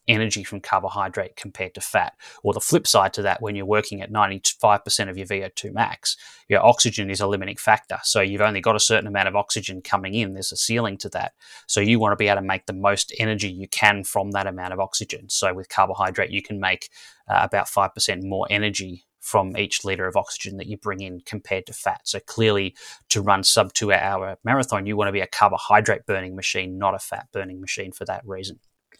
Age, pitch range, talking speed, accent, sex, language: 20-39, 95-110 Hz, 225 wpm, Australian, male, English